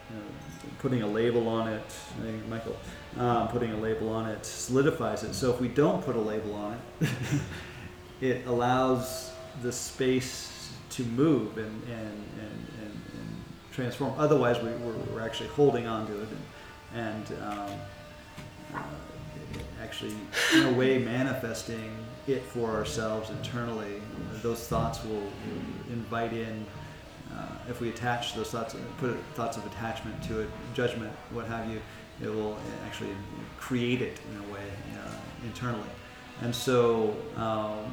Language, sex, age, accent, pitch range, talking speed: English, male, 30-49, American, 110-125 Hz, 150 wpm